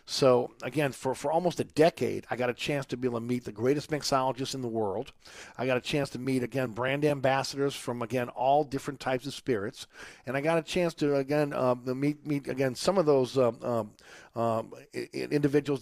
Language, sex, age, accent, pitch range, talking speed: English, male, 50-69, American, 125-155 Hz, 215 wpm